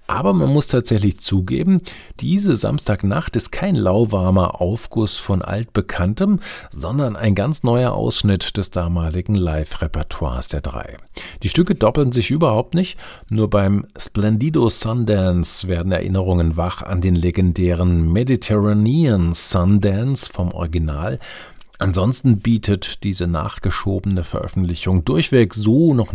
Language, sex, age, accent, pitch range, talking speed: German, male, 50-69, German, 85-115 Hz, 115 wpm